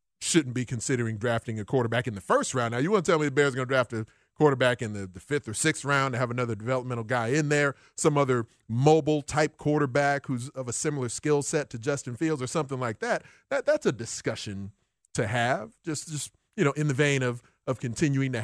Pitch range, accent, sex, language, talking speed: 120-145 Hz, American, male, English, 235 wpm